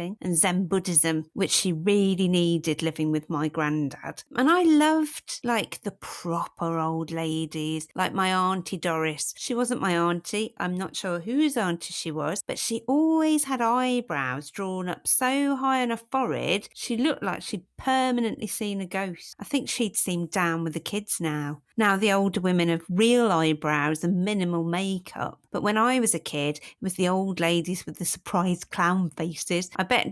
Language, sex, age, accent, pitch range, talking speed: English, female, 50-69, British, 165-235 Hz, 180 wpm